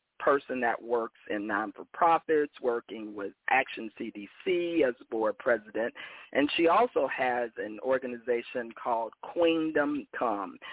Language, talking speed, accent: English, 120 wpm, American